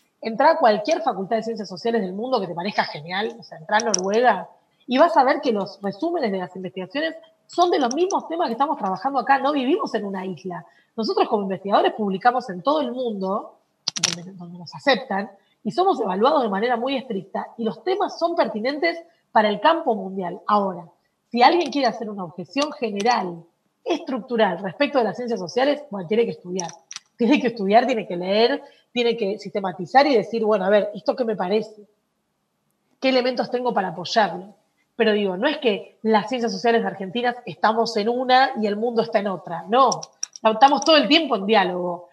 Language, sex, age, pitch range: Spanish, female, 40-59, 200-260 Hz